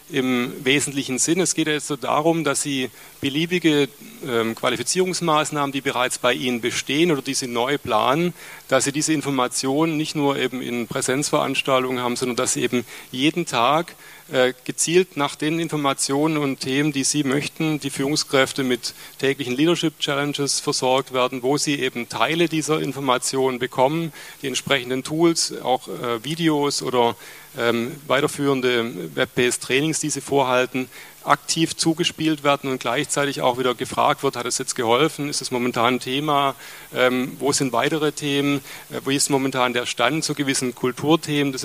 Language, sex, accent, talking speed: German, male, German, 155 wpm